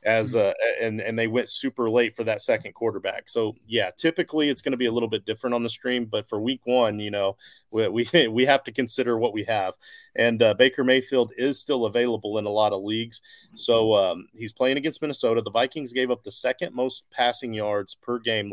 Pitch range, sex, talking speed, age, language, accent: 110-130 Hz, male, 225 wpm, 30-49, English, American